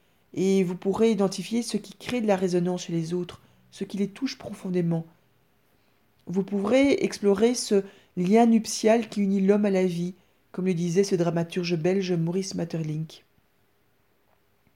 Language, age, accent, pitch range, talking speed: French, 40-59, French, 170-205 Hz, 155 wpm